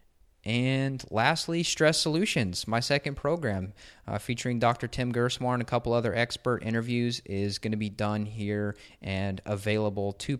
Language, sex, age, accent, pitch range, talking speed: English, male, 20-39, American, 100-120 Hz, 155 wpm